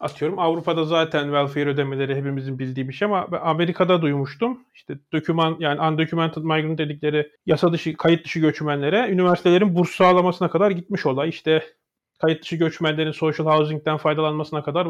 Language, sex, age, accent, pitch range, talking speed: Turkish, male, 40-59, native, 155-195 Hz, 145 wpm